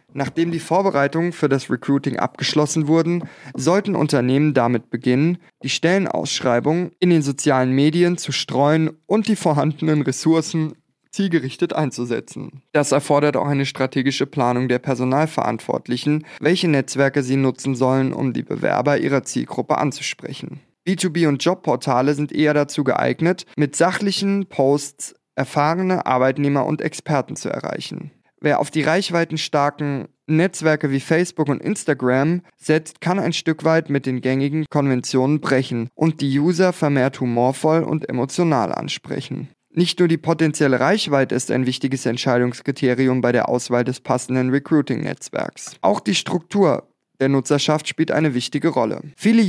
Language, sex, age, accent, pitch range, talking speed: German, male, 20-39, German, 135-165 Hz, 135 wpm